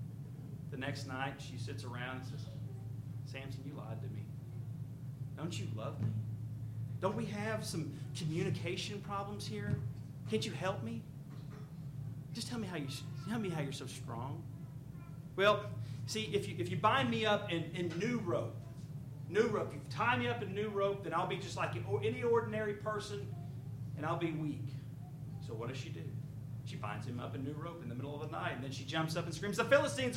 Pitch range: 120-145 Hz